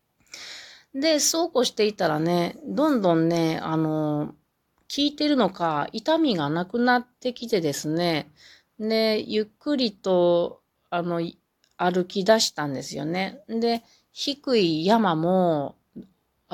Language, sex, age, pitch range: Japanese, female, 30-49, 150-220 Hz